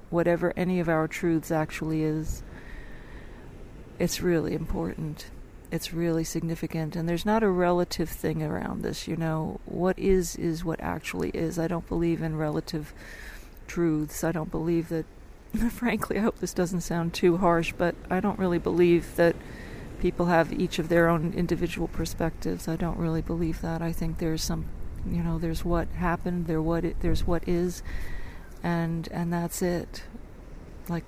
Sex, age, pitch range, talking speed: female, 40-59, 160-175 Hz, 165 wpm